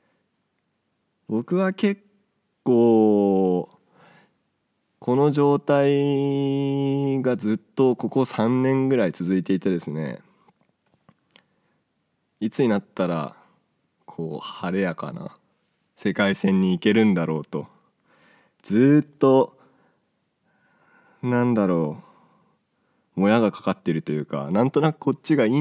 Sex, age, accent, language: male, 20-39, native, Japanese